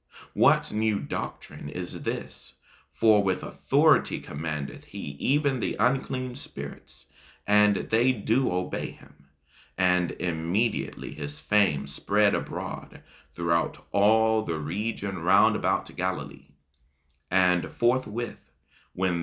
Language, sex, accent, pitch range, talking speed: English, male, American, 70-110 Hz, 110 wpm